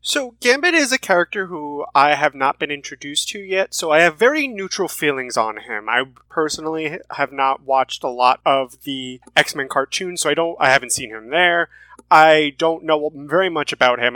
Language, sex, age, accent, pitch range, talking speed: English, male, 20-39, American, 140-215 Hz, 200 wpm